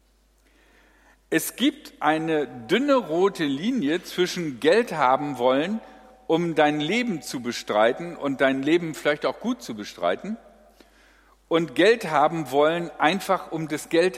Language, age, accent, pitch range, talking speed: German, 50-69, German, 130-205 Hz, 130 wpm